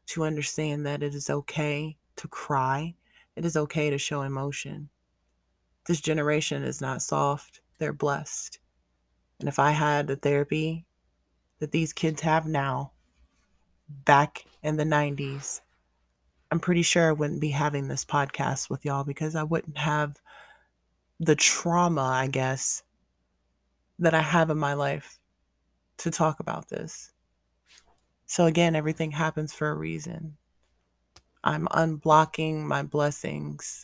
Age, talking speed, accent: 20-39, 135 wpm, American